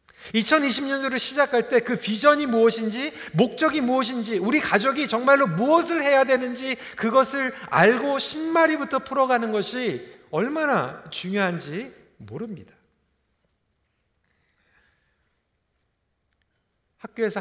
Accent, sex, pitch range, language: native, male, 180-255 Hz, Korean